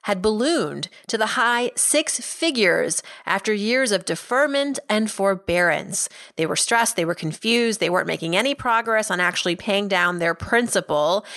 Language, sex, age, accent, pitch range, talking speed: English, female, 30-49, American, 180-250 Hz, 160 wpm